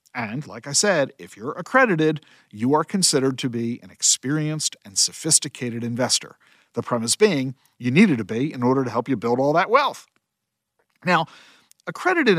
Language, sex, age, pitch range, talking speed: English, male, 50-69, 125-185 Hz, 170 wpm